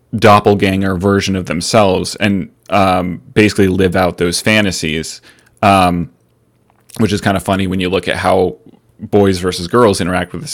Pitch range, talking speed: 95-115 Hz, 160 wpm